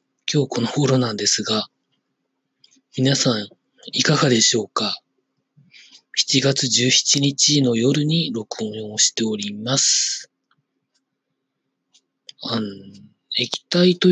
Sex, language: male, Japanese